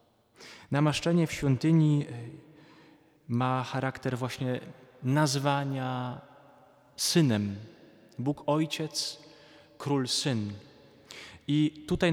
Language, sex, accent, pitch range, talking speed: Polish, male, native, 120-150 Hz, 70 wpm